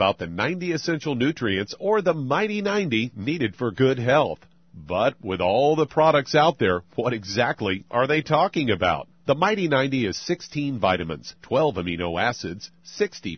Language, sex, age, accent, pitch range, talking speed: English, male, 50-69, American, 105-160 Hz, 160 wpm